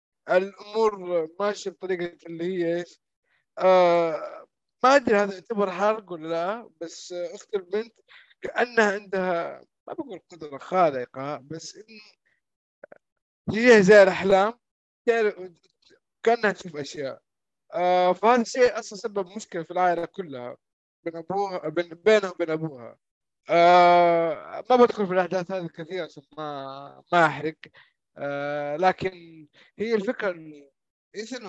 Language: Arabic